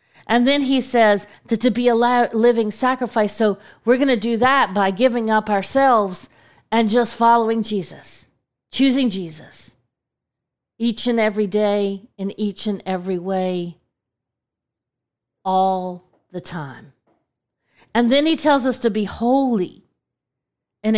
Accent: American